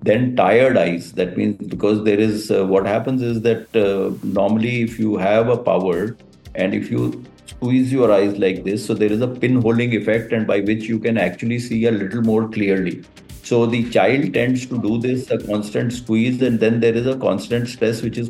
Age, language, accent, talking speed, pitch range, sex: 50-69, English, Indian, 215 wpm, 105-115 Hz, male